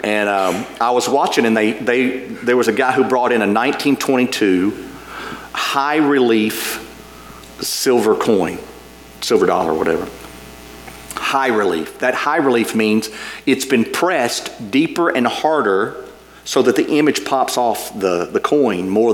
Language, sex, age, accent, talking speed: English, male, 40-59, American, 145 wpm